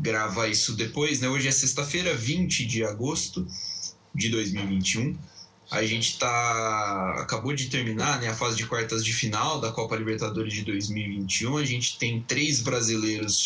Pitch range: 105-135 Hz